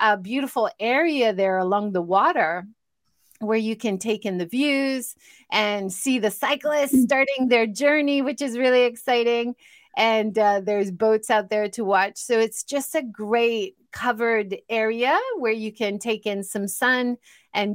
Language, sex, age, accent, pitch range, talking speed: English, female, 30-49, American, 215-280 Hz, 160 wpm